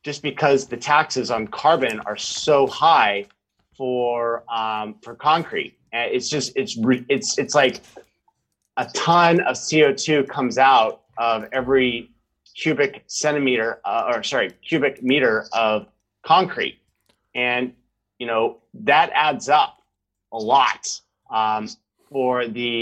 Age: 30-49